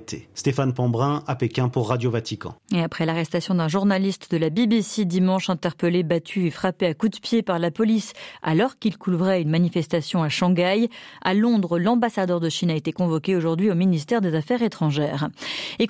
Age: 40-59